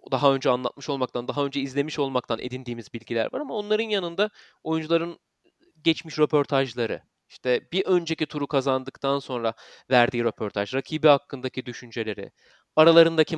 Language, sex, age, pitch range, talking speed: Turkish, male, 30-49, 130-165 Hz, 130 wpm